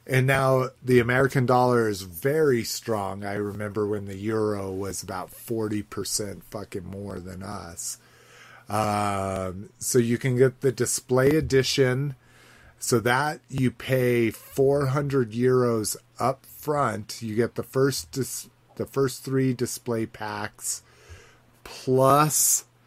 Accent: American